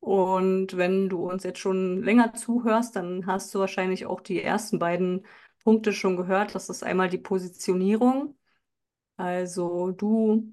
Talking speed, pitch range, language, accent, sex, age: 150 wpm, 185-215 Hz, German, German, female, 30-49